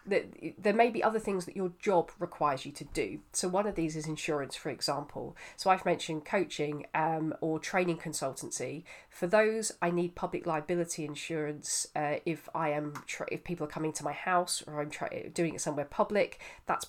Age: 40-59